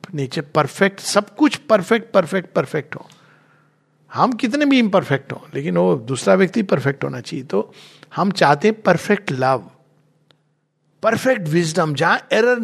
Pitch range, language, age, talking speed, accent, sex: 145-200 Hz, Hindi, 50-69, 145 wpm, native, male